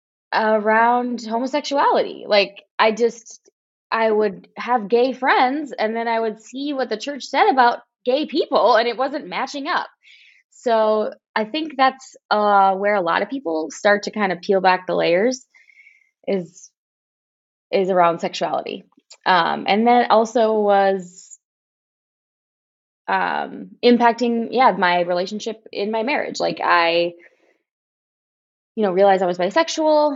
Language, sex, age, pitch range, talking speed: English, female, 20-39, 185-250 Hz, 140 wpm